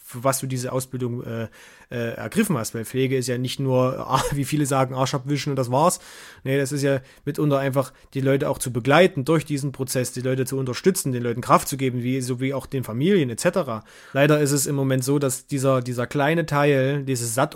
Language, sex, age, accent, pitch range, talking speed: German, male, 30-49, German, 130-145 Hz, 220 wpm